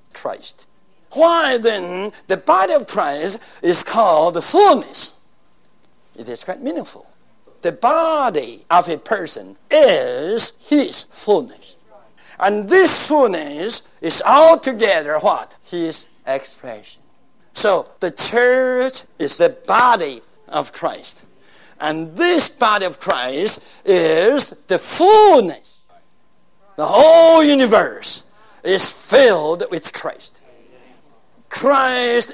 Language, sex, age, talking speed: English, male, 60-79, 100 wpm